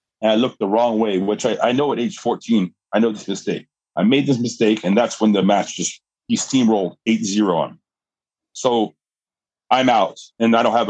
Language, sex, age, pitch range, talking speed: English, male, 30-49, 110-140 Hz, 210 wpm